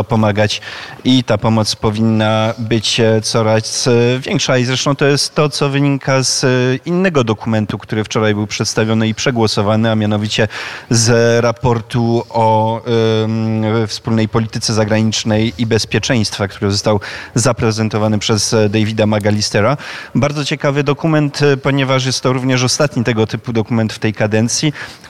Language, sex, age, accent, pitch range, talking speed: Polish, male, 30-49, native, 110-125 Hz, 130 wpm